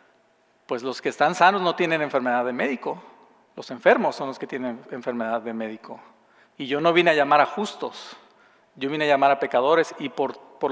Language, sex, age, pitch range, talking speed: Spanish, male, 40-59, 140-180 Hz, 200 wpm